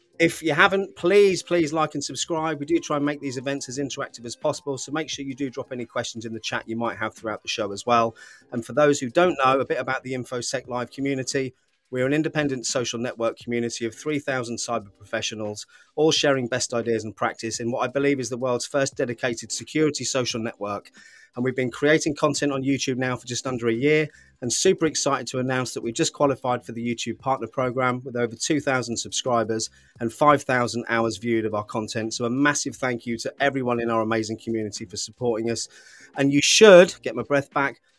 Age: 30-49